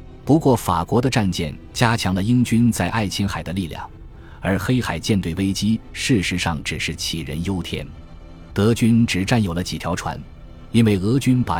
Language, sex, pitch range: Chinese, male, 85-115 Hz